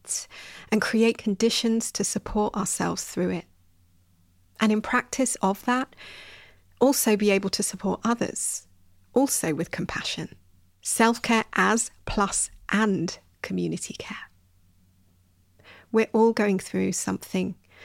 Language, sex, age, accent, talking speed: English, female, 30-49, British, 110 wpm